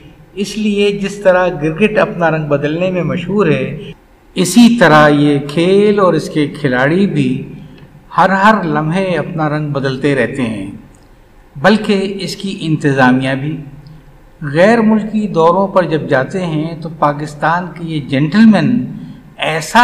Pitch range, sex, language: 150-195 Hz, male, Urdu